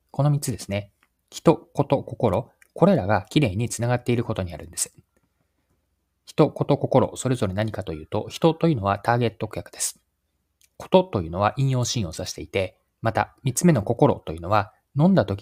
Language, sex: Japanese, male